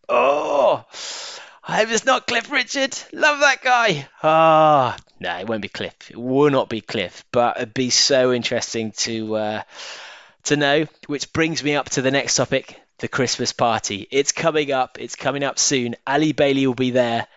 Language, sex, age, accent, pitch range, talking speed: English, male, 20-39, British, 115-155 Hz, 185 wpm